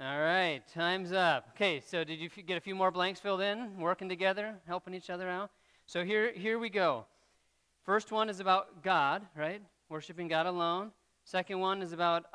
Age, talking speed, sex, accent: 40-59, 190 wpm, male, American